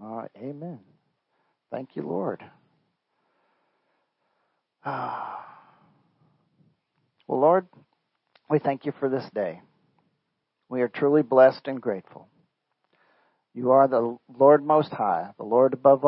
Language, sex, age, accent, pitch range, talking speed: English, male, 50-69, American, 125-155 Hz, 110 wpm